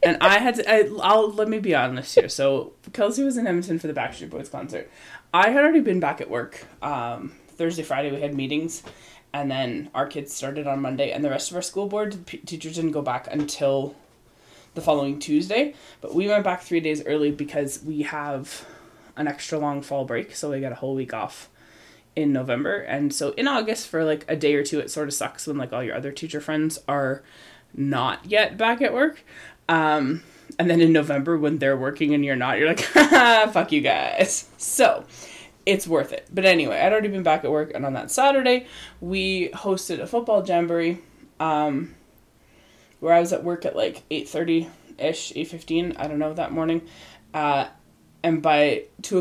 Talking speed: 200 wpm